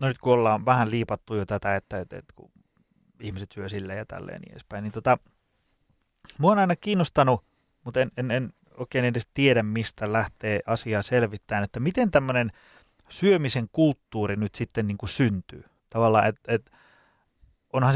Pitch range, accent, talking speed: 110-135 Hz, native, 165 wpm